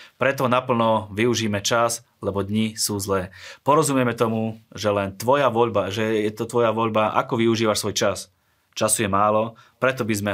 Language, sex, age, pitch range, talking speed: Slovak, male, 20-39, 100-120 Hz, 170 wpm